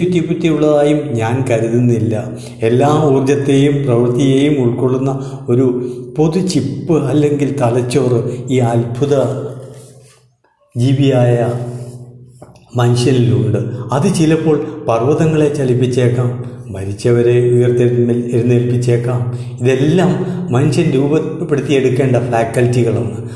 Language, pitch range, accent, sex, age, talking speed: Malayalam, 115-145 Hz, native, male, 60-79, 65 wpm